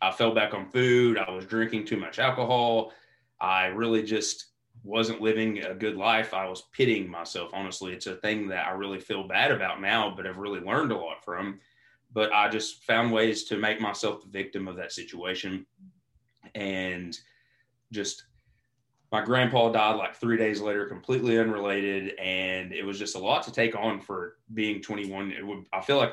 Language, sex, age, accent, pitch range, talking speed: English, male, 30-49, American, 95-115 Hz, 185 wpm